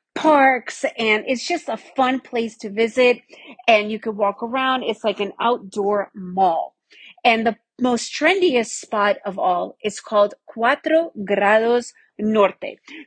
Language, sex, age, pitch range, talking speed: English, female, 40-59, 210-265 Hz, 140 wpm